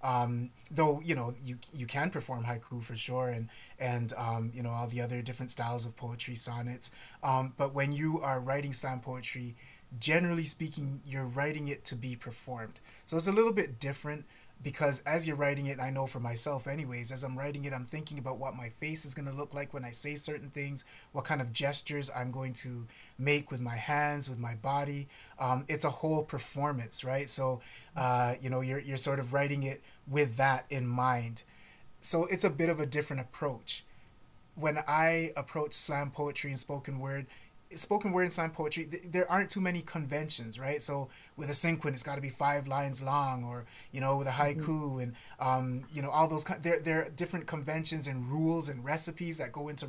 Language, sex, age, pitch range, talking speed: English, male, 20-39, 125-155 Hz, 210 wpm